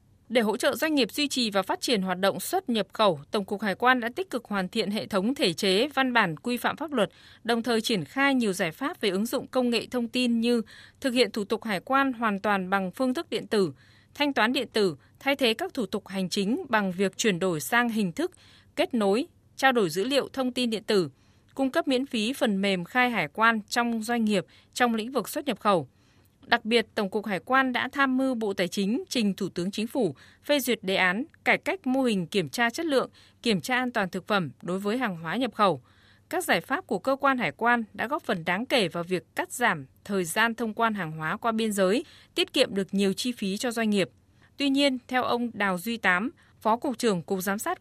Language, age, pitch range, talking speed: Vietnamese, 20-39, 195-255 Hz, 245 wpm